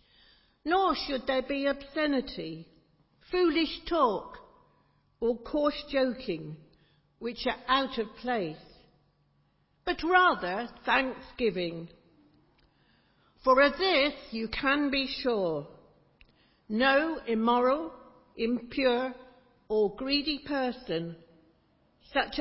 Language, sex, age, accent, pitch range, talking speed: English, female, 60-79, British, 190-275 Hz, 85 wpm